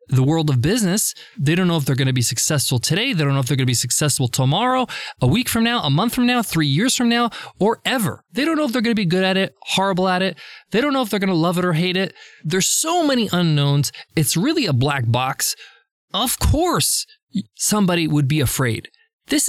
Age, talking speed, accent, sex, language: 20-39, 245 wpm, American, male, English